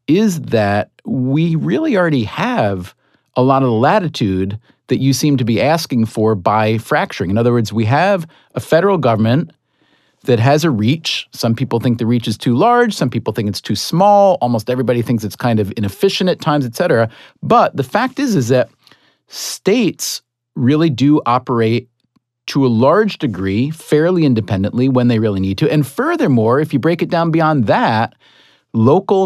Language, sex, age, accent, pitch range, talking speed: English, male, 40-59, American, 120-165 Hz, 175 wpm